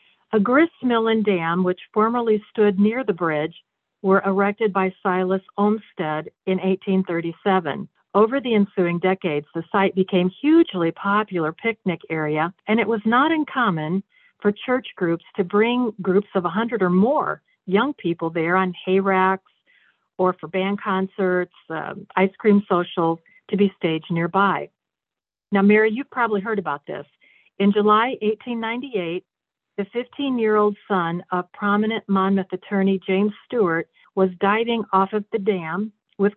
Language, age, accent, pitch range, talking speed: English, 50-69, American, 175-215 Hz, 145 wpm